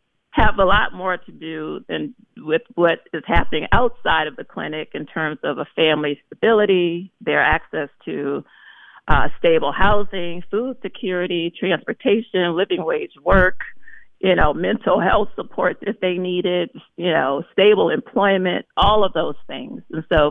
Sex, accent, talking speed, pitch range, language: female, American, 150 wpm, 155-190 Hz, English